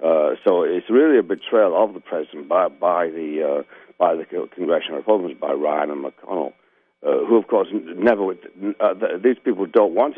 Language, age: English, 60-79